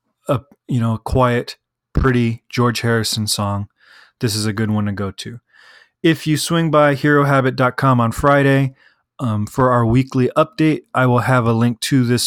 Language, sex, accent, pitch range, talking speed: English, male, American, 120-150 Hz, 175 wpm